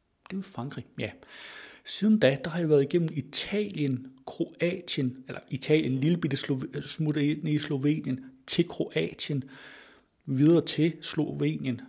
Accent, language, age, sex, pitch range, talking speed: native, Danish, 60-79, male, 120-155 Hz, 125 wpm